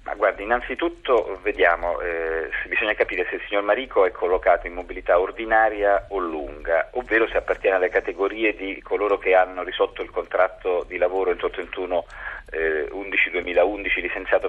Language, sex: Italian, male